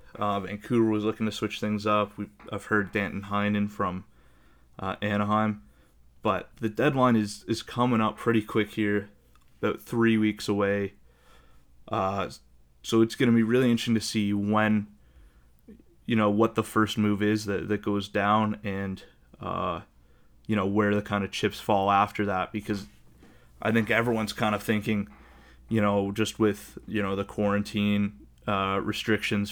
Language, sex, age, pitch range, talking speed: English, male, 20-39, 95-105 Hz, 165 wpm